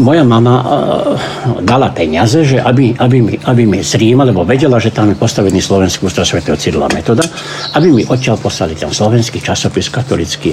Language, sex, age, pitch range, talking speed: Slovak, male, 60-79, 105-150 Hz, 170 wpm